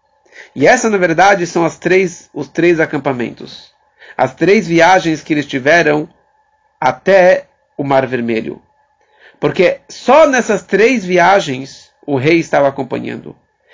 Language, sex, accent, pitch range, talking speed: English, male, Brazilian, 155-225 Hz, 125 wpm